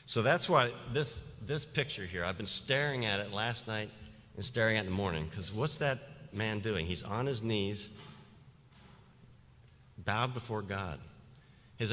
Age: 50-69